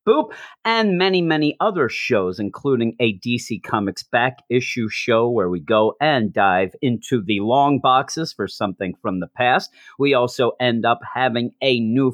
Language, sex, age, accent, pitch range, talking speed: English, male, 40-59, American, 105-130 Hz, 170 wpm